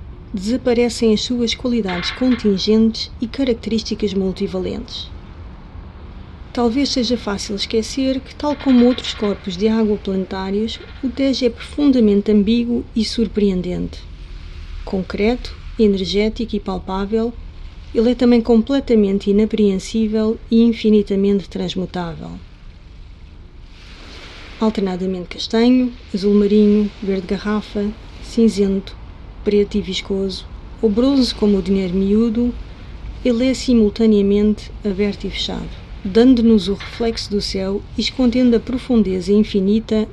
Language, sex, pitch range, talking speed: Portuguese, female, 190-230 Hz, 105 wpm